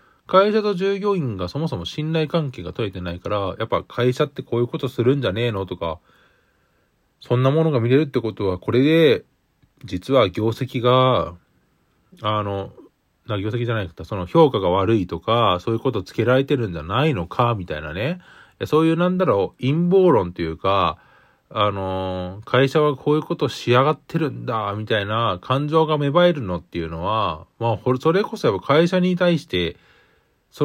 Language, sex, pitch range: Japanese, male, 100-155 Hz